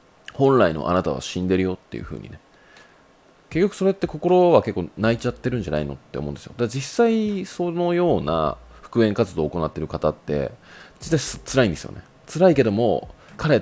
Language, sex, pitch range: Japanese, male, 80-125 Hz